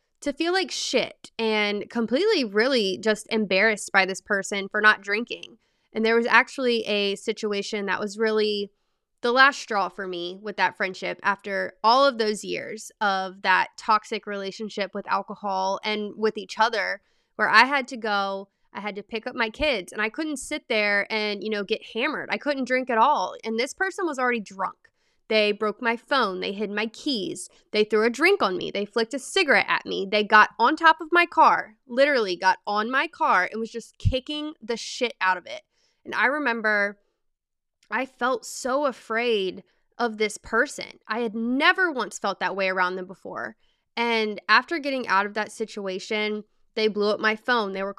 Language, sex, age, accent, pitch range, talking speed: English, female, 20-39, American, 205-255 Hz, 195 wpm